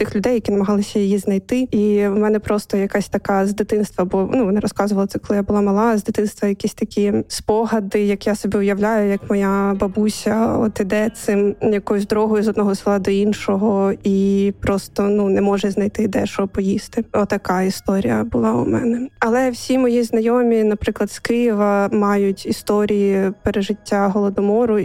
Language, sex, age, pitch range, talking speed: Ukrainian, female, 20-39, 205-225 Hz, 175 wpm